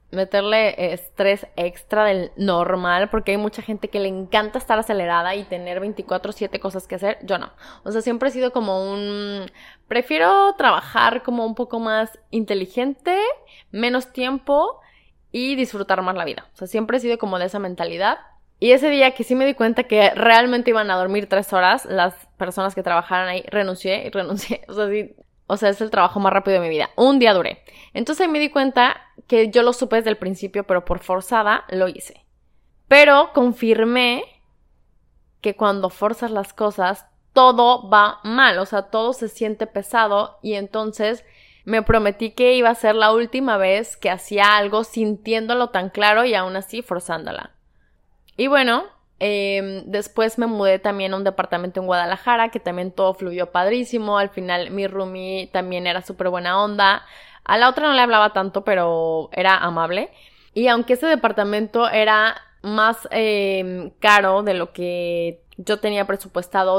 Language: Spanish